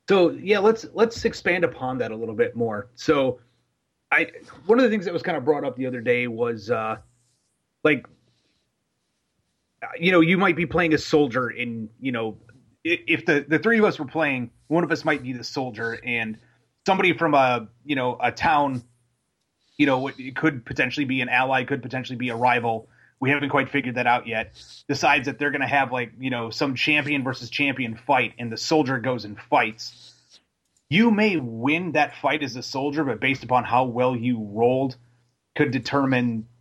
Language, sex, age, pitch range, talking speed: English, male, 30-49, 120-145 Hz, 195 wpm